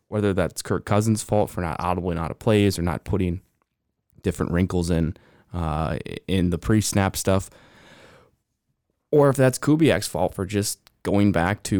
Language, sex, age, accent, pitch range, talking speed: English, male, 20-39, American, 90-105 Hz, 170 wpm